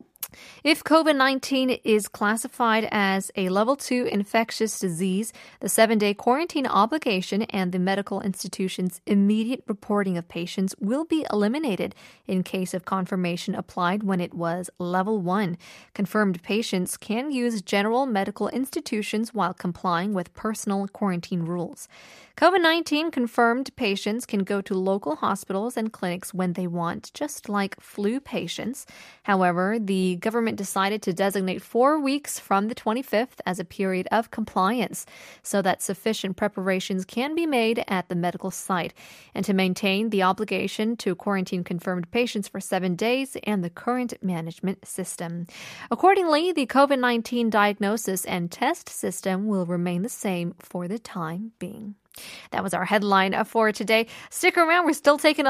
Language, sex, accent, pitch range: Korean, female, American, 190-245 Hz